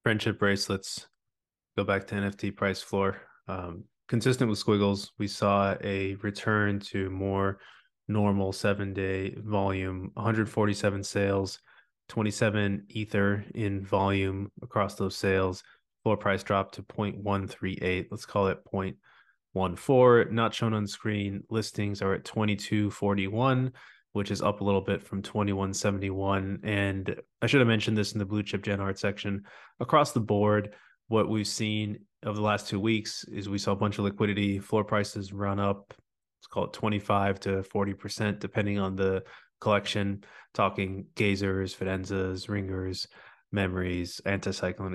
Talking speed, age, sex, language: 140 wpm, 20-39, male, English